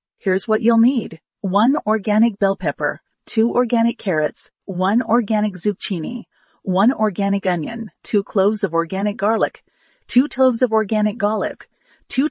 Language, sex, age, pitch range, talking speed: English, female, 40-59, 190-235 Hz, 135 wpm